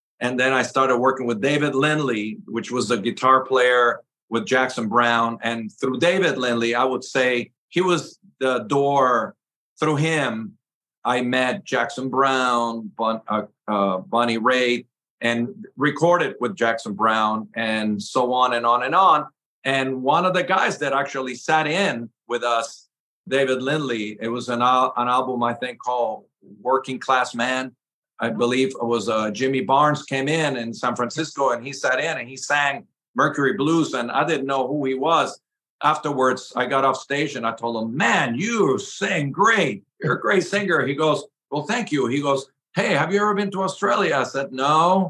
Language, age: English, 50-69